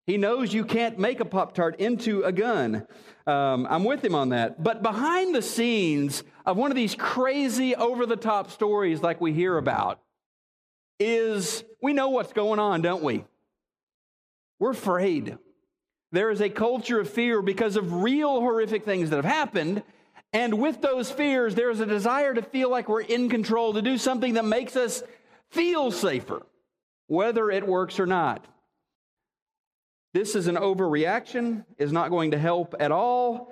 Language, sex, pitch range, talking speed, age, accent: English, male, 160-235 Hz, 165 wpm, 40-59, American